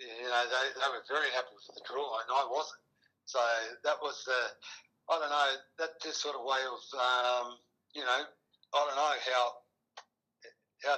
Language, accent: English, Australian